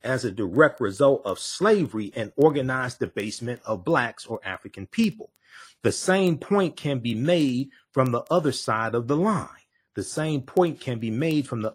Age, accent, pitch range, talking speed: 40-59, American, 120-170 Hz, 180 wpm